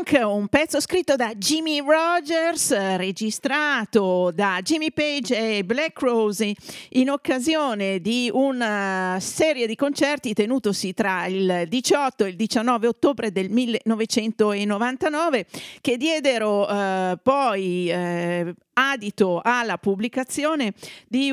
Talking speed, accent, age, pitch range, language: 110 wpm, native, 40-59, 195-270 Hz, Italian